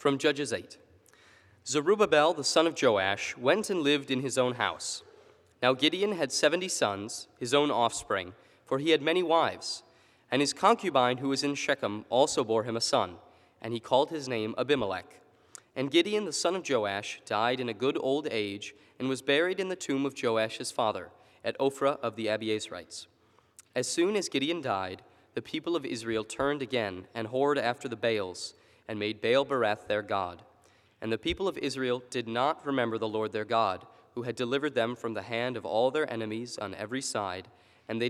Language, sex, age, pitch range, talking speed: English, male, 30-49, 110-145 Hz, 190 wpm